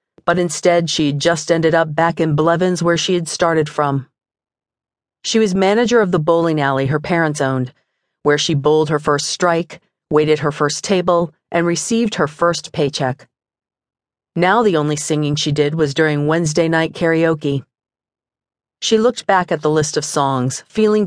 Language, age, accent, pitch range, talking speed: English, 40-59, American, 150-205 Hz, 170 wpm